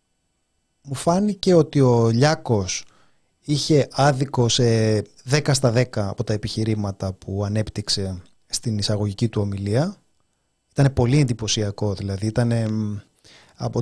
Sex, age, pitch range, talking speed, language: male, 30-49, 105-145 Hz, 115 wpm, Greek